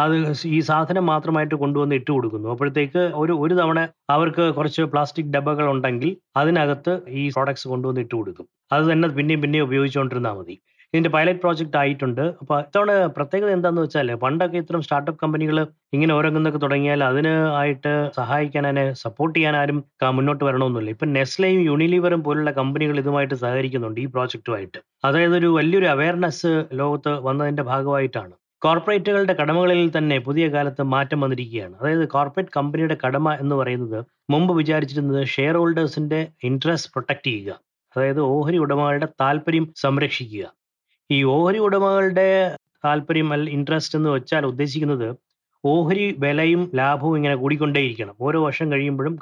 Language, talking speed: Malayalam, 130 wpm